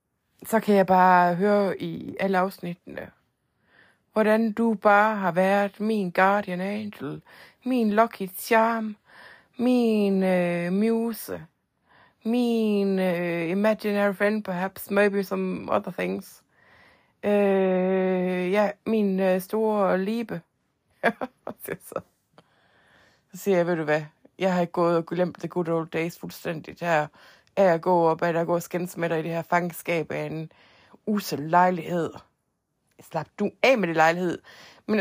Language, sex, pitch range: Danish, female, 175-215 Hz